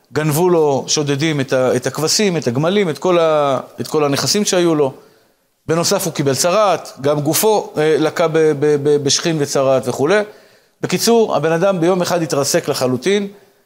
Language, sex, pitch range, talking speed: Hebrew, male, 145-185 Hz, 155 wpm